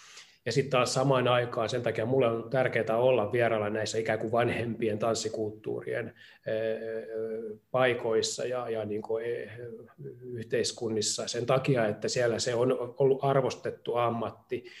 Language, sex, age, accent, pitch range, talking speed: Finnish, male, 20-39, native, 110-135 Hz, 130 wpm